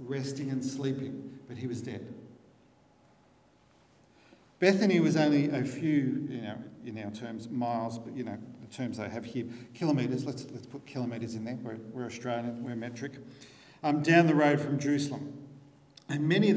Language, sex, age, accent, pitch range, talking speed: English, male, 50-69, Australian, 125-150 Hz, 170 wpm